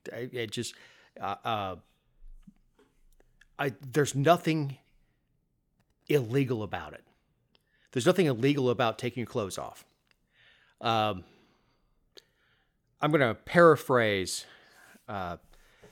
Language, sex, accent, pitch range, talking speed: English, male, American, 110-135 Hz, 95 wpm